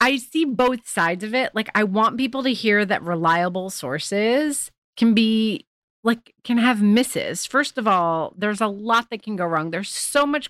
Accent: American